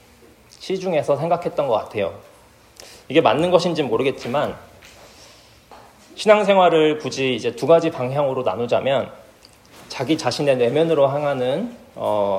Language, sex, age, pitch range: Korean, male, 40-59, 125-170 Hz